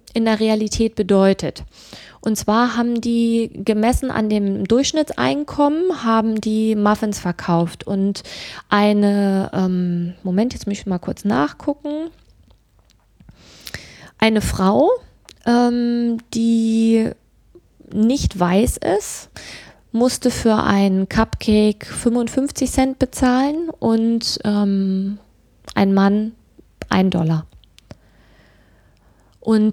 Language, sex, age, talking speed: German, female, 20-39, 95 wpm